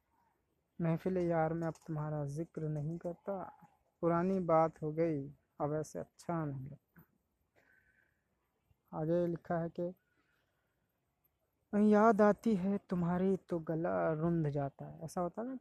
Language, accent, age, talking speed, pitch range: Hindi, native, 20-39, 130 wpm, 155-185 Hz